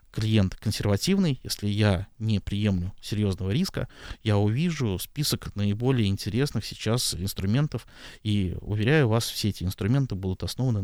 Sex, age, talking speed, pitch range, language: male, 20-39, 125 wpm, 100-120 Hz, Russian